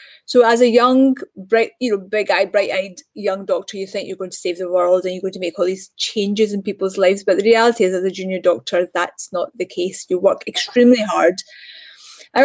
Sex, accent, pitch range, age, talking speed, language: female, British, 190-235 Hz, 30-49, 235 wpm, English